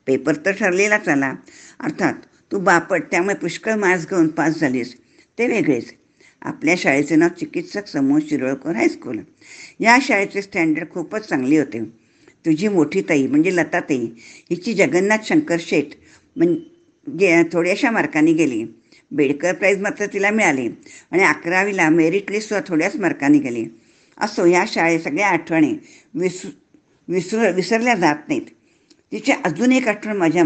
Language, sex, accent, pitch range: Marathi, female, native, 165-255 Hz